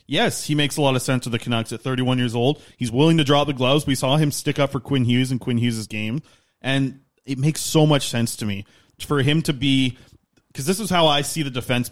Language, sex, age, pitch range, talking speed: English, male, 20-39, 120-145 Hz, 260 wpm